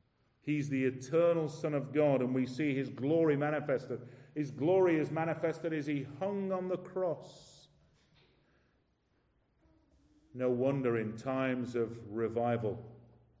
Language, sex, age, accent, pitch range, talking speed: English, male, 40-59, British, 120-145 Hz, 125 wpm